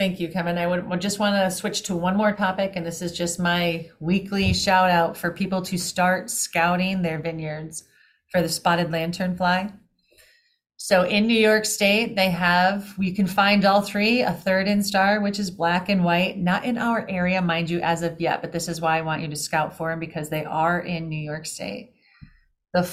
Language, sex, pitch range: English, female, 165-195 Hz